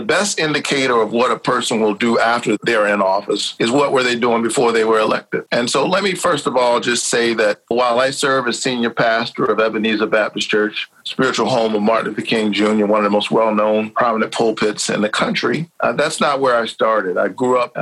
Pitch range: 105-115 Hz